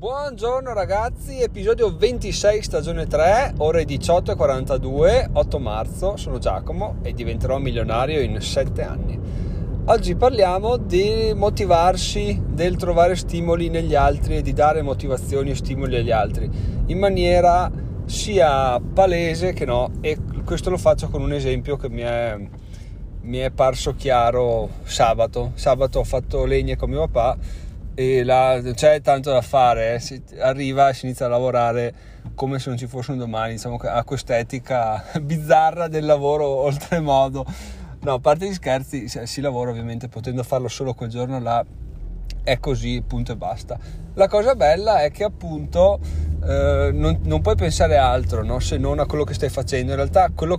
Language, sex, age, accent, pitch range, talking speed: Italian, male, 30-49, native, 115-150 Hz, 155 wpm